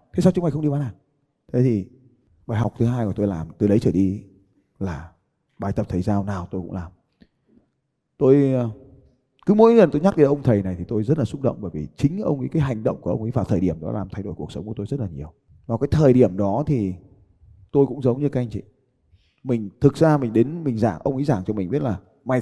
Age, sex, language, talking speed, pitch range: 20-39, male, Vietnamese, 265 wpm, 105-150 Hz